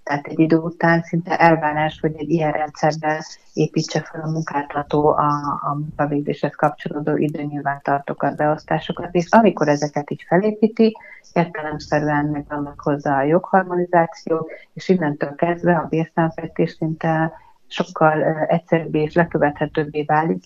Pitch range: 150-170 Hz